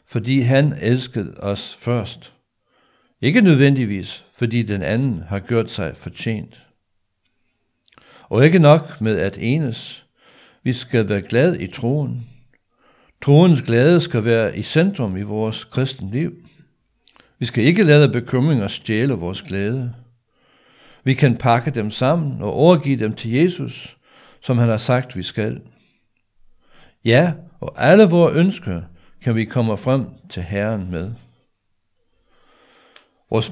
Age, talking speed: 60-79, 130 wpm